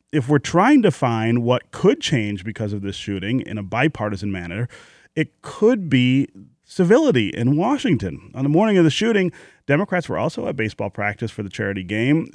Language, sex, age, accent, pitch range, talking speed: English, male, 30-49, American, 105-140 Hz, 185 wpm